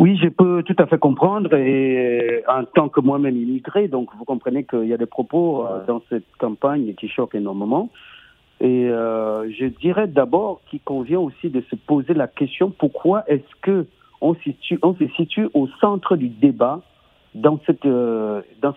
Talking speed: 165 wpm